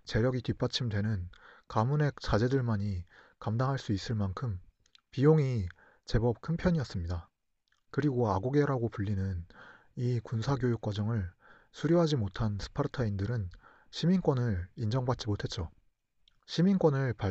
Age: 30-49